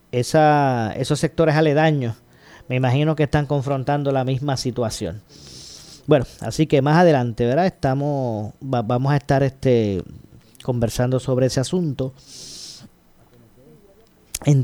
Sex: male